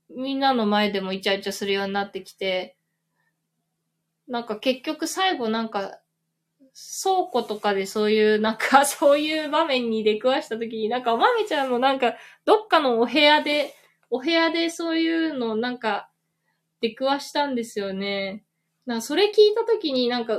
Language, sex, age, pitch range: Japanese, female, 20-39, 195-295 Hz